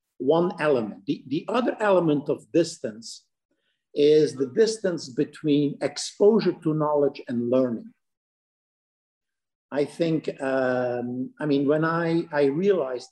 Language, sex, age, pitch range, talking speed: English, male, 50-69, 135-170 Hz, 120 wpm